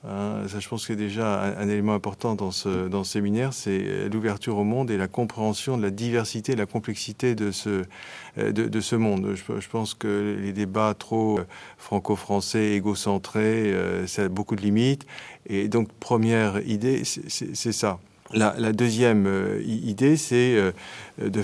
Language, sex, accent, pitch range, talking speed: French, male, French, 100-115 Hz, 180 wpm